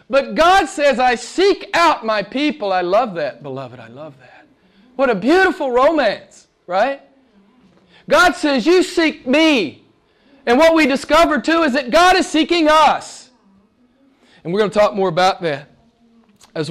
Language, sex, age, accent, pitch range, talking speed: English, male, 40-59, American, 180-250 Hz, 160 wpm